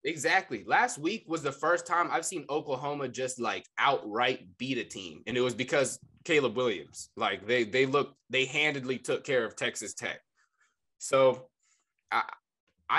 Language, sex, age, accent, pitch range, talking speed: English, male, 20-39, American, 120-155 Hz, 160 wpm